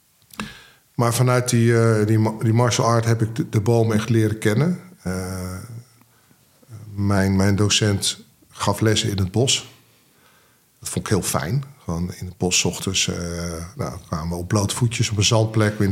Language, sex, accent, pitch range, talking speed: Dutch, male, Dutch, 100-120 Hz, 175 wpm